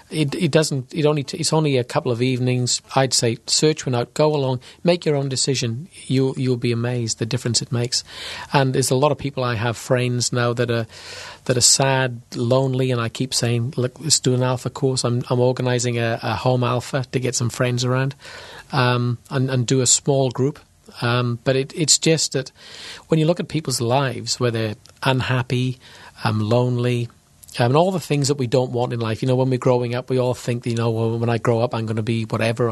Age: 40-59